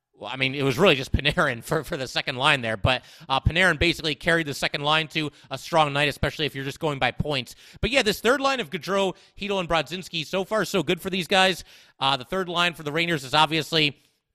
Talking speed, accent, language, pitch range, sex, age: 245 wpm, American, English, 145-185 Hz, male, 30-49